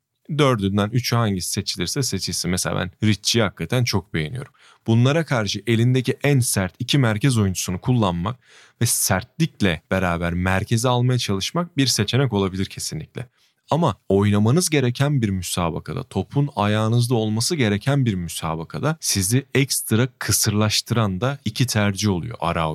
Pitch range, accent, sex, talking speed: 100-125 Hz, native, male, 130 wpm